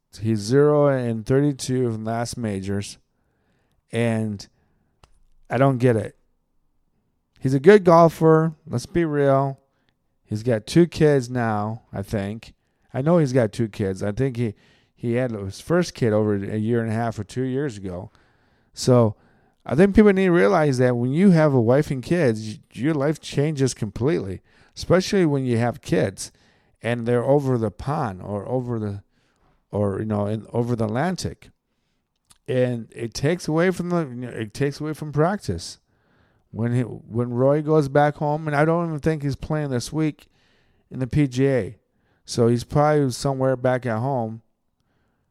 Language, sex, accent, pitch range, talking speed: English, male, American, 110-145 Hz, 175 wpm